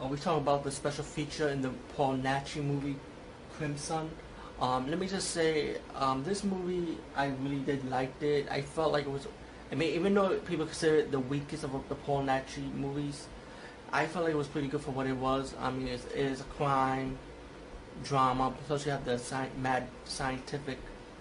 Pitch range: 130-145 Hz